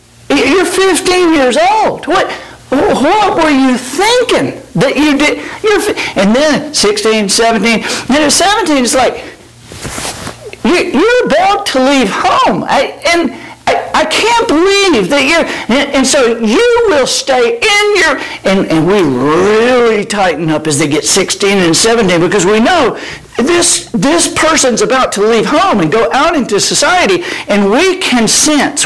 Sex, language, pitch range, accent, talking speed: male, English, 190-300 Hz, American, 160 wpm